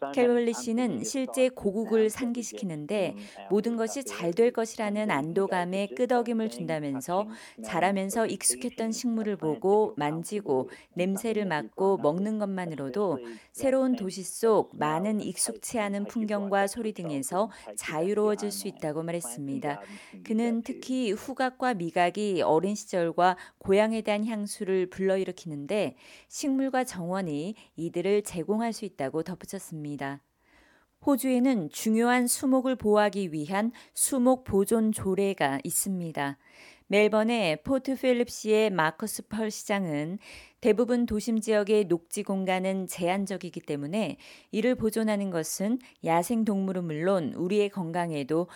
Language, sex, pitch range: Korean, female, 175-225 Hz